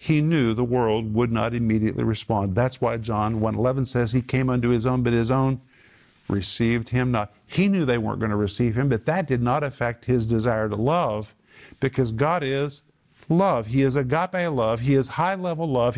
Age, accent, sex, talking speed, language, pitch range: 50-69, American, male, 205 wpm, English, 120-150 Hz